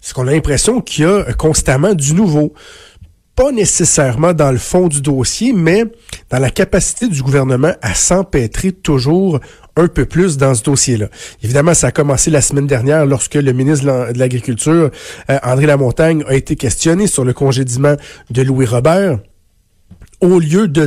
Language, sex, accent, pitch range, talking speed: French, male, Canadian, 130-160 Hz, 165 wpm